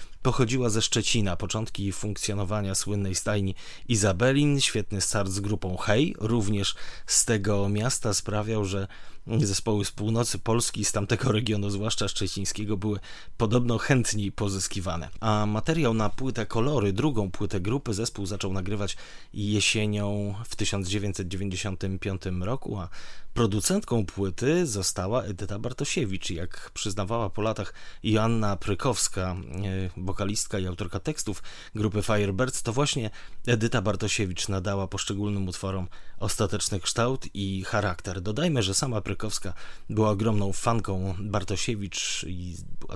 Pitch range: 95-115 Hz